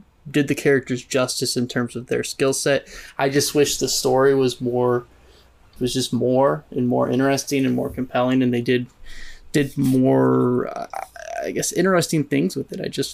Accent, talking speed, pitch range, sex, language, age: American, 185 wpm, 125-140 Hz, male, English, 20-39